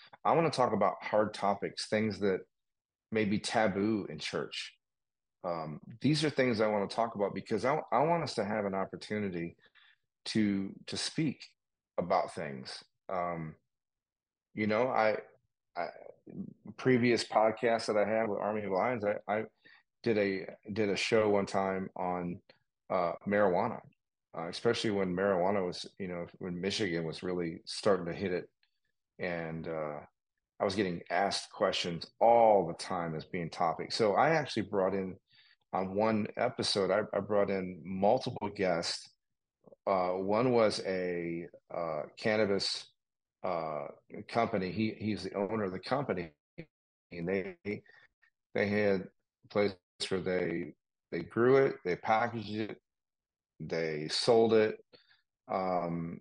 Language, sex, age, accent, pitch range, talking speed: English, male, 30-49, American, 90-110 Hz, 145 wpm